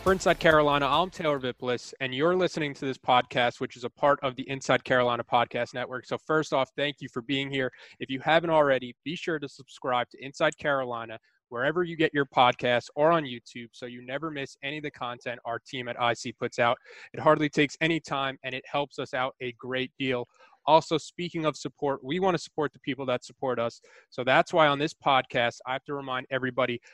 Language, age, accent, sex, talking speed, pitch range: English, 20-39, American, male, 225 wpm, 125-150 Hz